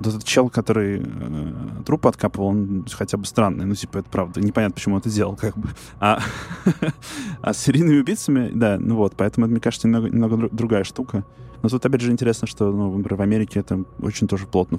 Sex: male